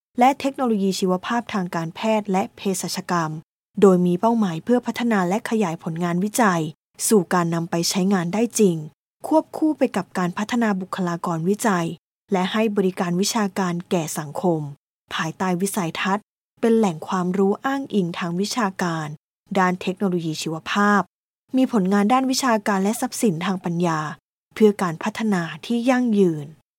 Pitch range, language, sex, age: 180-225 Hz, English, female, 20-39